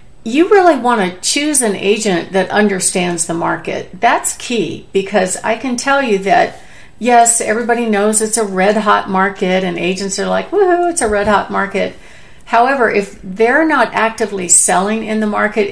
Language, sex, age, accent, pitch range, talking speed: English, female, 50-69, American, 185-225 Hz, 170 wpm